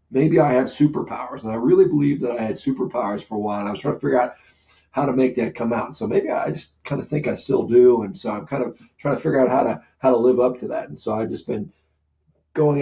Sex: male